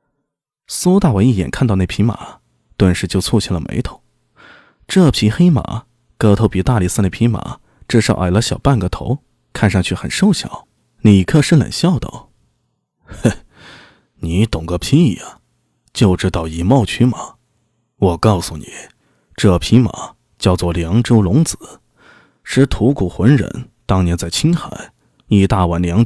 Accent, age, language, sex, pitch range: native, 20-39, Chinese, male, 90-120 Hz